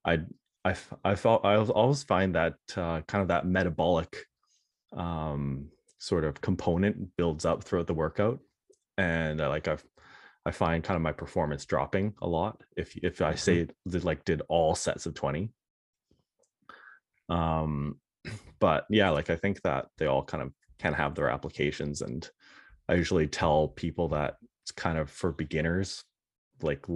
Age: 30-49